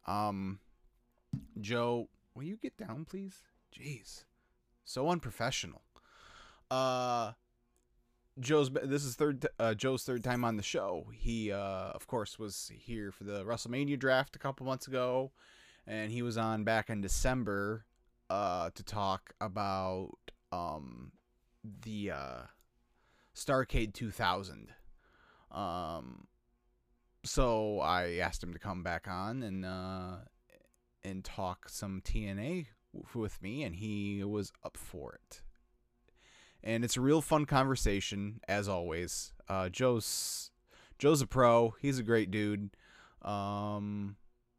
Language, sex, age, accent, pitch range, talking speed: English, male, 20-39, American, 95-130 Hz, 125 wpm